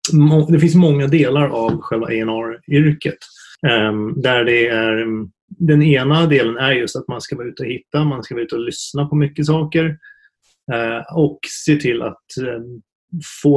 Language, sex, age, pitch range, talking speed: Swedish, male, 30-49, 120-150 Hz, 160 wpm